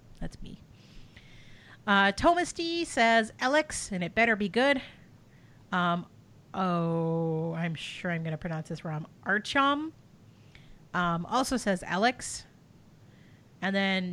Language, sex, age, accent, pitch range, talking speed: English, female, 40-59, American, 175-255 Hz, 120 wpm